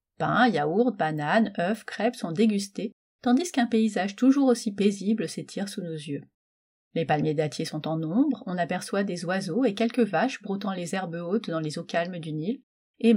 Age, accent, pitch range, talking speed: 30-49, French, 170-240 Hz, 185 wpm